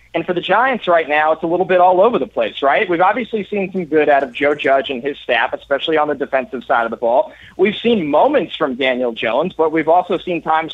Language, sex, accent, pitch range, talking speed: English, male, American, 145-205 Hz, 255 wpm